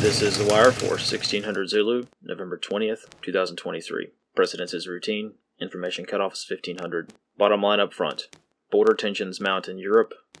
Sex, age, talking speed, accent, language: male, 30-49, 150 wpm, American, English